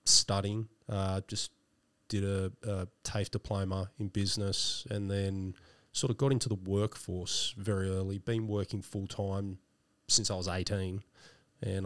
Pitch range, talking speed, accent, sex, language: 95-110 Hz, 140 wpm, Australian, male, English